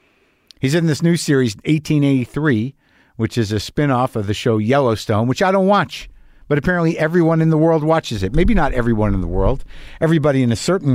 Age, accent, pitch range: 50-69, American, 110-155 Hz